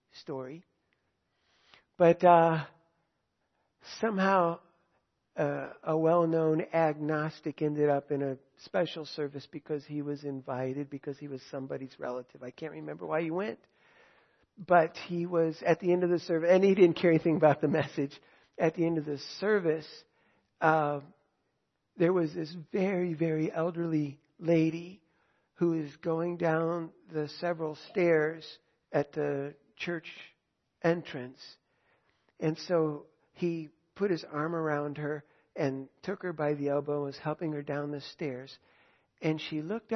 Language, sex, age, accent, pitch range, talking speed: English, male, 60-79, American, 145-170 Hz, 145 wpm